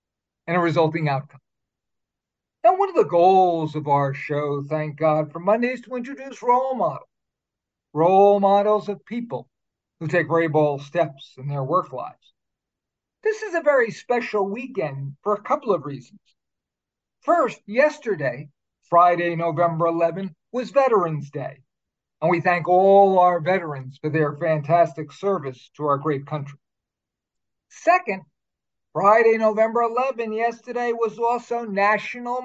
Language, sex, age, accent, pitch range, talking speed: English, male, 50-69, American, 155-240 Hz, 135 wpm